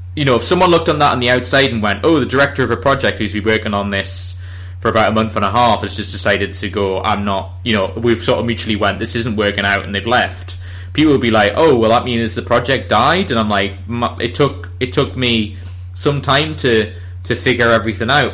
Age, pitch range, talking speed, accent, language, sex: 20-39, 100-120 Hz, 250 wpm, British, English, male